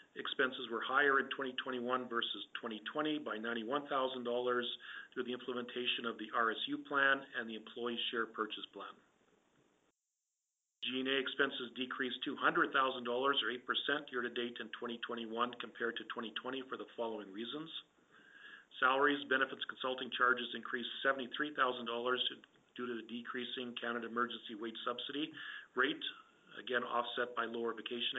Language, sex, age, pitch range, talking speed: English, male, 40-59, 120-135 Hz, 125 wpm